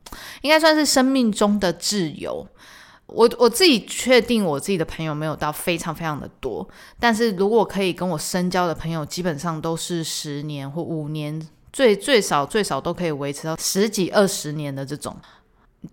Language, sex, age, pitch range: Chinese, female, 20-39, 160-215 Hz